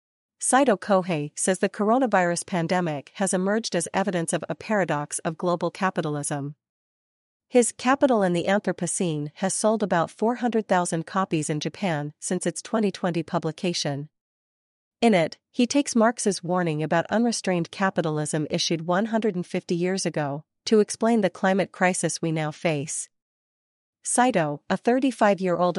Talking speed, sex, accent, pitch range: 130 wpm, female, American, 165-200 Hz